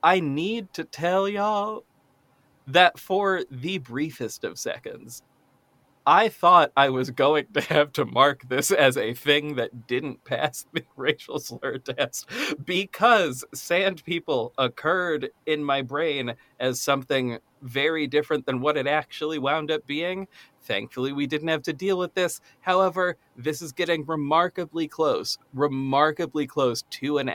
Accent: American